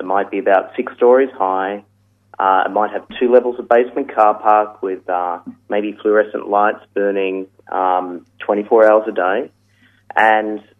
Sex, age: male, 30-49